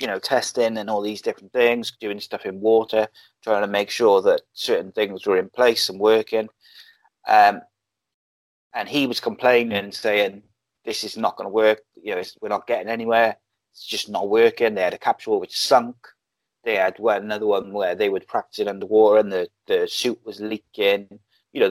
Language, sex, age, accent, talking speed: English, male, 30-49, British, 195 wpm